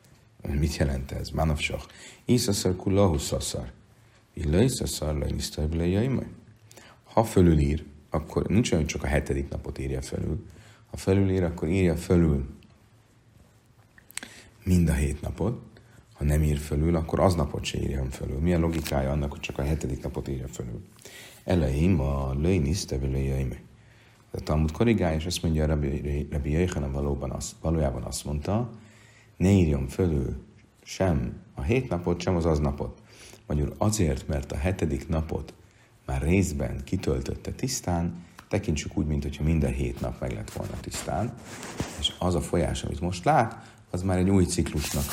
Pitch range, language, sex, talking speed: 75-105 Hz, Hungarian, male, 145 wpm